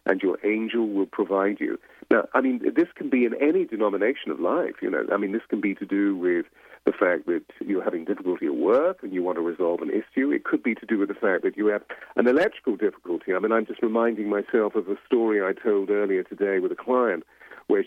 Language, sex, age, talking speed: English, male, 50-69, 245 wpm